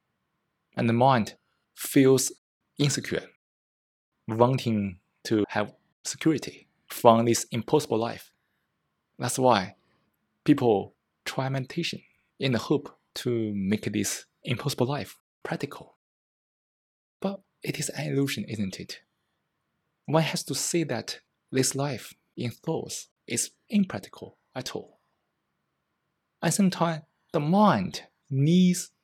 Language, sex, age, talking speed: English, male, 20-39, 105 wpm